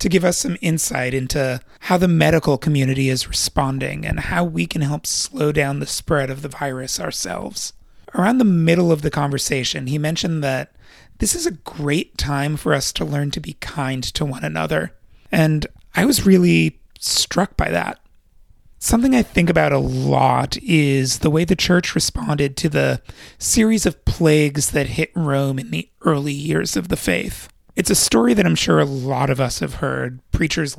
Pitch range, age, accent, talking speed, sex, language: 130-165 Hz, 30-49, American, 185 wpm, male, English